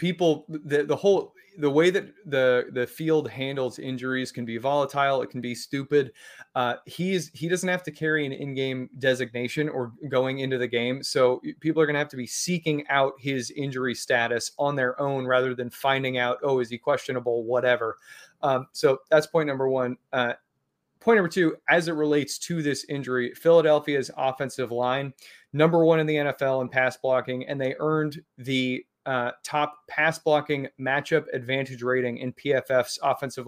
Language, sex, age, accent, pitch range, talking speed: English, male, 30-49, American, 130-155 Hz, 180 wpm